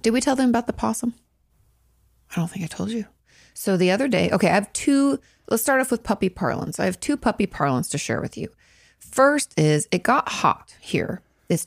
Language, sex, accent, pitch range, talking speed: English, female, American, 160-210 Hz, 220 wpm